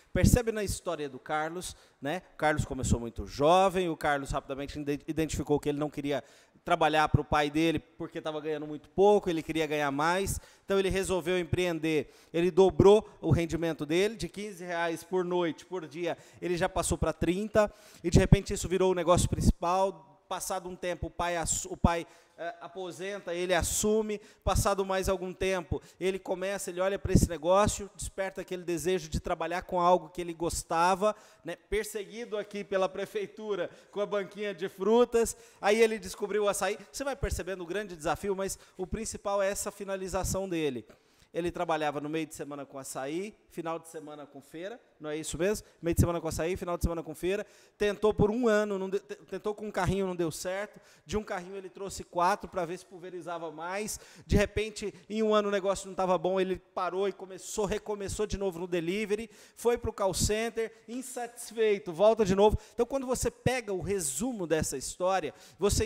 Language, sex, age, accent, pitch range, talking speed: Portuguese, male, 30-49, Brazilian, 165-200 Hz, 190 wpm